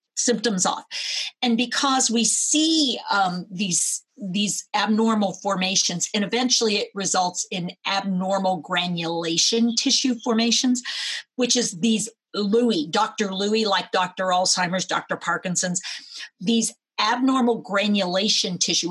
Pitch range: 185-235 Hz